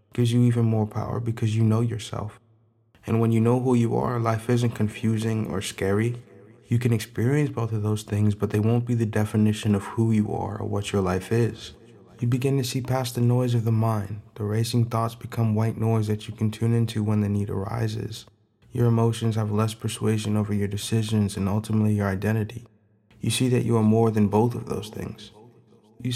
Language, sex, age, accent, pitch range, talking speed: English, male, 20-39, American, 110-120 Hz, 210 wpm